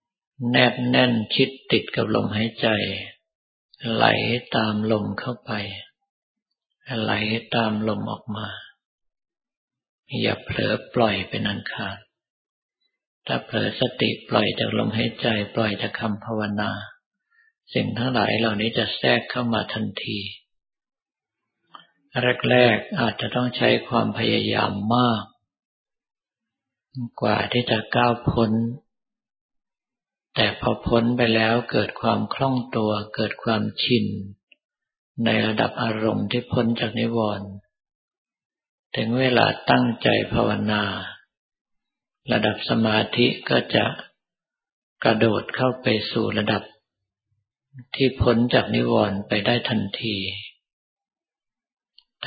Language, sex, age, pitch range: Thai, male, 50-69, 105-125 Hz